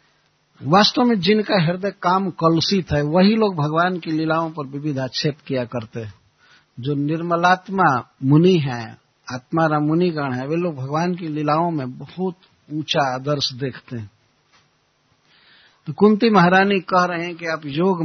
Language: Hindi